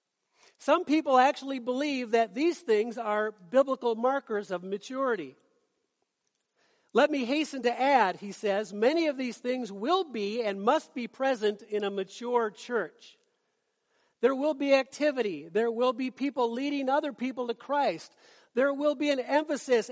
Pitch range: 220-285 Hz